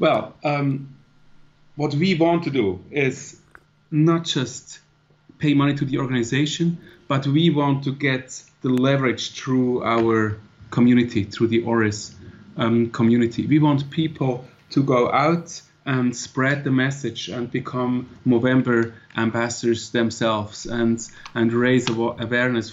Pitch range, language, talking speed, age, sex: 115-145 Hz, English, 130 wpm, 30-49, male